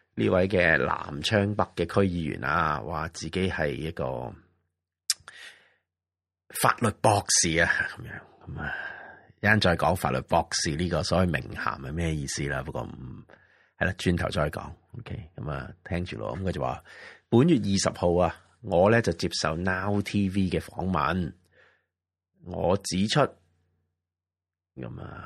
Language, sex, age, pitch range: Chinese, male, 30-49, 85-105 Hz